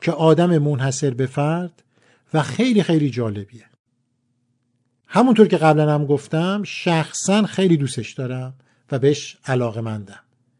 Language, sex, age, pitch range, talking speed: Persian, male, 50-69, 125-190 Hz, 120 wpm